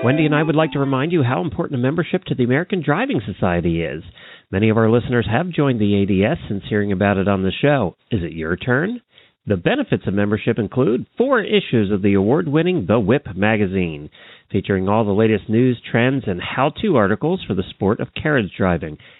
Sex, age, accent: male, 40-59, American